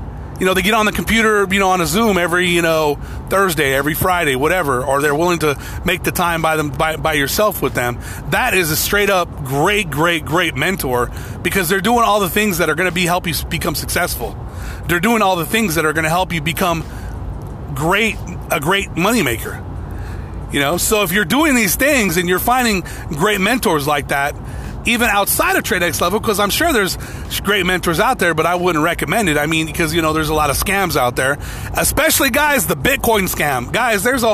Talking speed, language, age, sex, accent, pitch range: 220 wpm, English, 30-49, male, American, 150-205 Hz